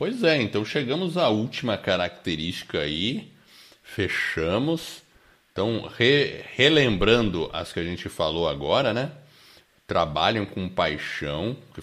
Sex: male